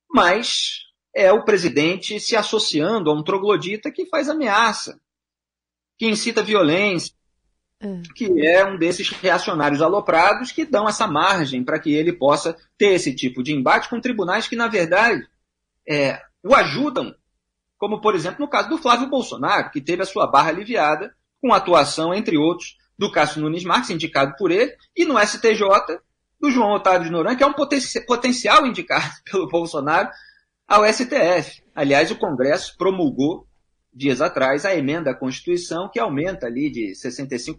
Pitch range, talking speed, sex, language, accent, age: 145-215 Hz, 160 wpm, male, Portuguese, Brazilian, 40-59